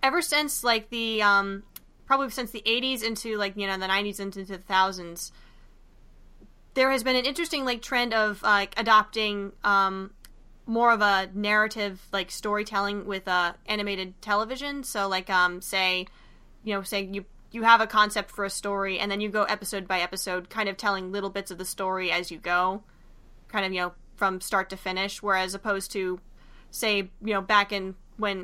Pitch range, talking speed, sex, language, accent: 190-215 Hz, 190 wpm, female, English, American